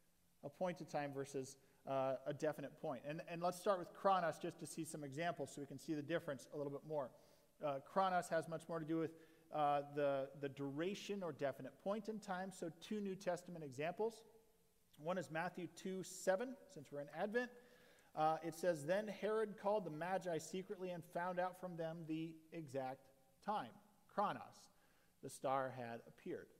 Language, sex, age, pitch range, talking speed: English, male, 40-59, 150-190 Hz, 185 wpm